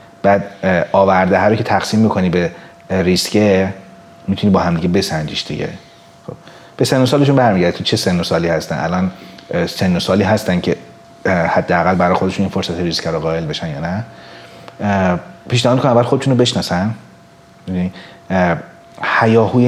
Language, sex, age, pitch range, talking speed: Persian, male, 30-49, 90-115 Hz, 145 wpm